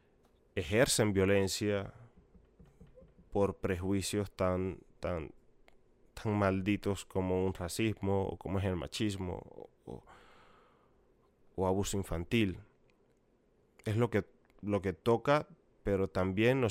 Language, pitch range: Spanish, 95-115 Hz